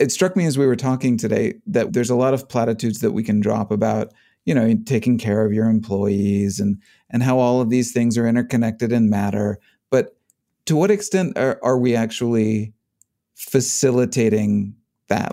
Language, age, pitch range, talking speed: English, 40-59, 110-125 Hz, 185 wpm